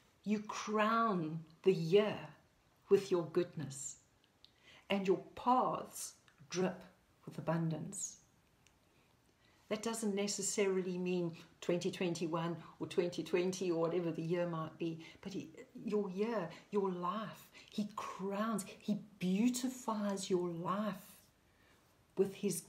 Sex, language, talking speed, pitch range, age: female, English, 105 wpm, 175-215 Hz, 60-79